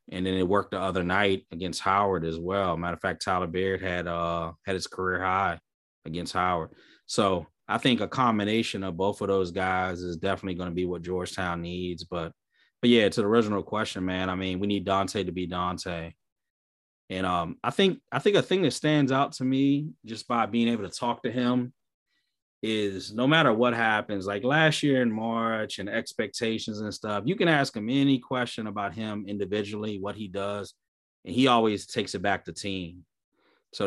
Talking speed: 200 wpm